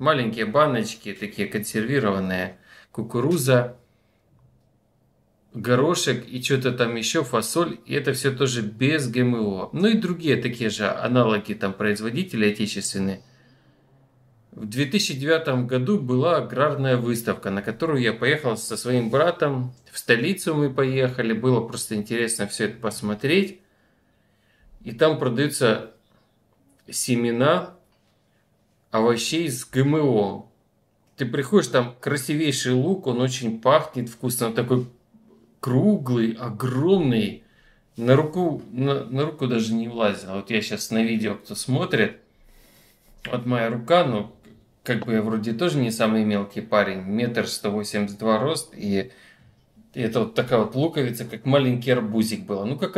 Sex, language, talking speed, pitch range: male, Russian, 130 wpm, 110-140 Hz